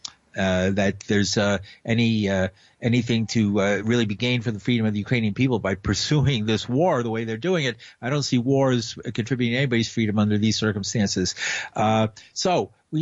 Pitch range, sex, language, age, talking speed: 115-165 Hz, male, English, 50-69, 195 wpm